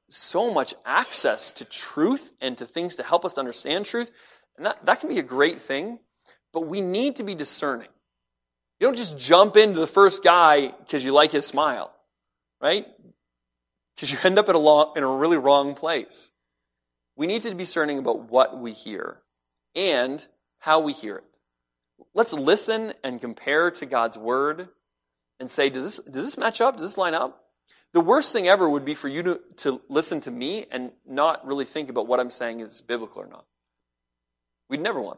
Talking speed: 195 wpm